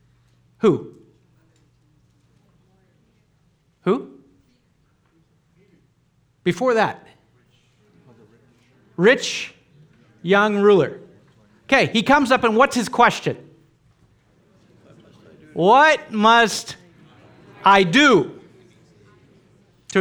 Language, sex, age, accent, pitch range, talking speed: English, male, 50-69, American, 160-220 Hz, 60 wpm